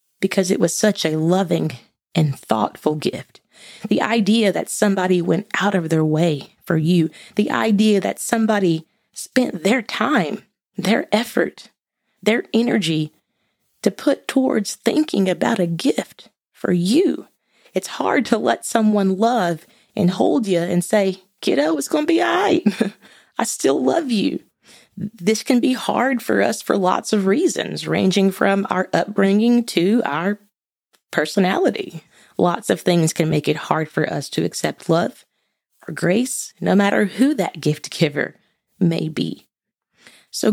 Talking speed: 150 wpm